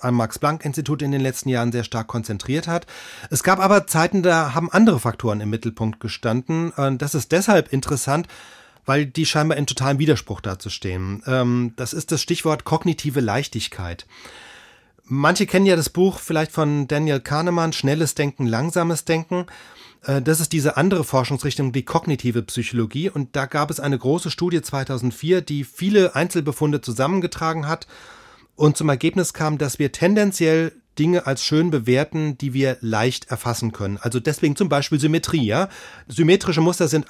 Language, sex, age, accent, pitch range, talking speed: German, male, 30-49, German, 130-165 Hz, 155 wpm